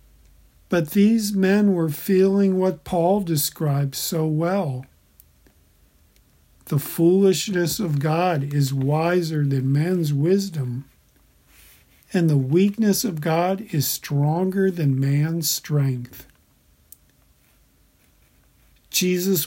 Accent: American